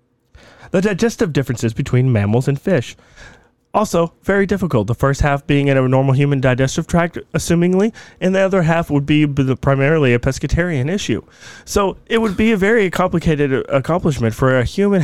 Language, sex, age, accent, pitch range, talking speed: English, male, 30-49, American, 115-165 Hz, 170 wpm